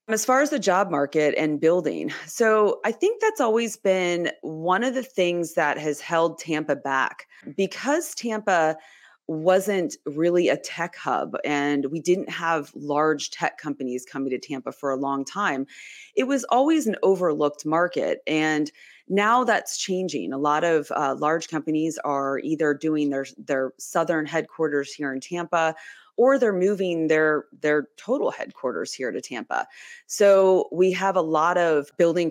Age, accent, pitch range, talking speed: 30-49, American, 145-190 Hz, 160 wpm